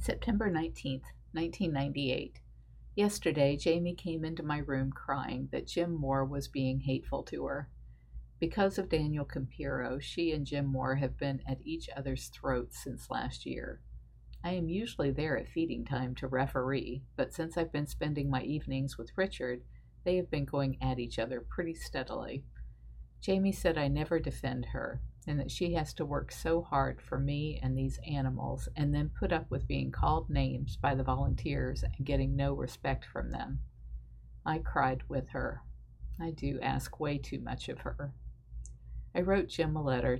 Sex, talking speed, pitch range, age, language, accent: female, 170 wpm, 125-155 Hz, 50-69, English, American